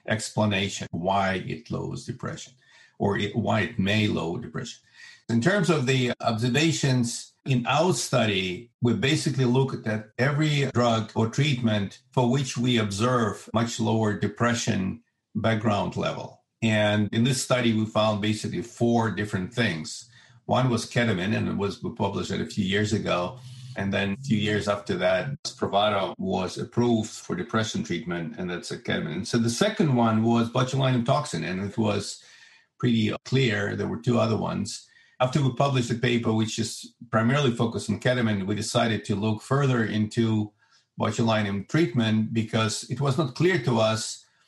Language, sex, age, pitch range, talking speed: English, male, 50-69, 105-125 Hz, 160 wpm